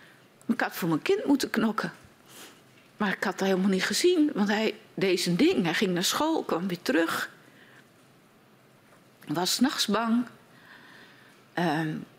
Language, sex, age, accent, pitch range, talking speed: Dutch, female, 40-59, Dutch, 185-250 Hz, 150 wpm